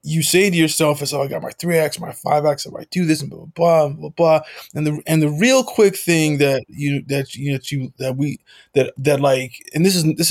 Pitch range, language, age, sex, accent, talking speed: 130-165 Hz, English, 20-39, male, American, 275 wpm